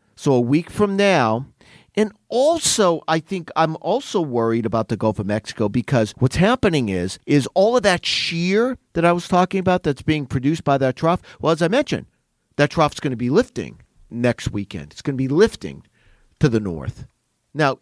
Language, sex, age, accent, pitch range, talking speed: English, male, 50-69, American, 120-175 Hz, 195 wpm